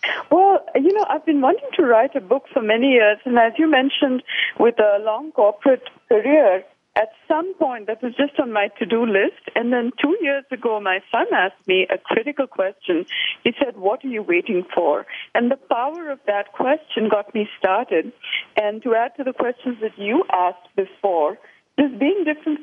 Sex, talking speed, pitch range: female, 195 wpm, 190-290 Hz